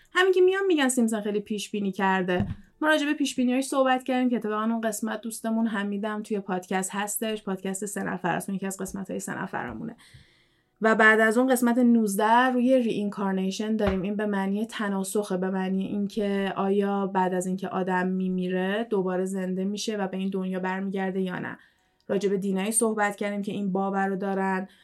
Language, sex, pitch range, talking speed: Persian, female, 190-230 Hz, 180 wpm